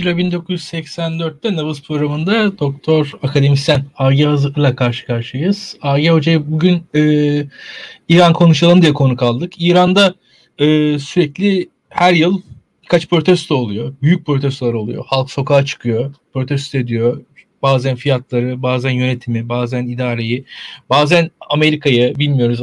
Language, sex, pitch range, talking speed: Turkish, male, 135-170 Hz, 115 wpm